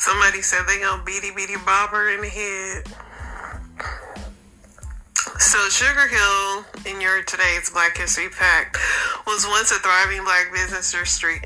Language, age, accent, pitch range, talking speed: English, 30-49, American, 175-200 Hz, 135 wpm